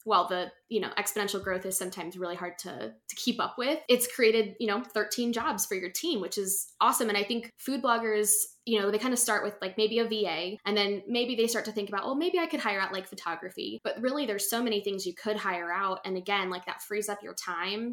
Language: English